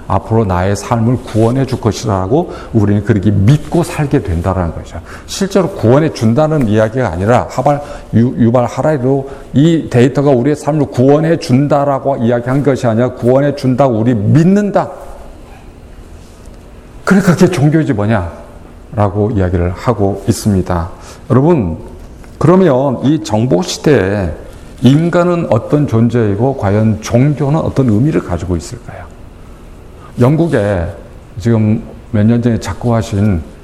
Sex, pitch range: male, 95-135 Hz